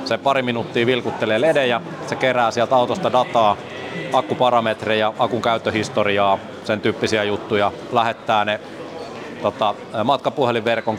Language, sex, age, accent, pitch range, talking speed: Finnish, male, 30-49, native, 105-120 Hz, 110 wpm